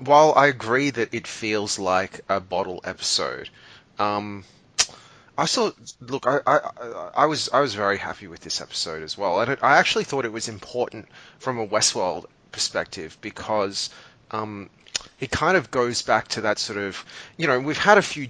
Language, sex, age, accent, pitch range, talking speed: English, male, 20-39, Australian, 100-120 Hz, 180 wpm